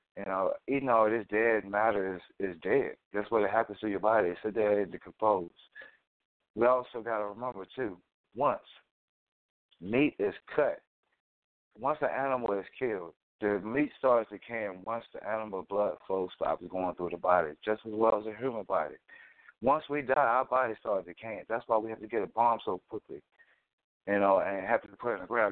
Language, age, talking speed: English, 30-49, 200 wpm